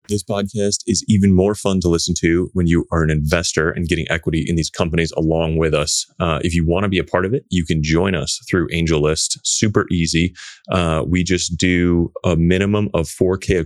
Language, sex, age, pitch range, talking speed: English, male, 30-49, 85-105 Hz, 220 wpm